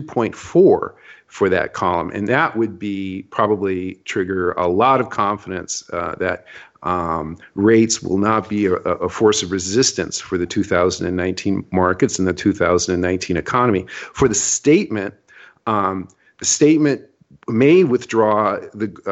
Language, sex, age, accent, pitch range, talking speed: English, male, 50-69, American, 95-110 Hz, 135 wpm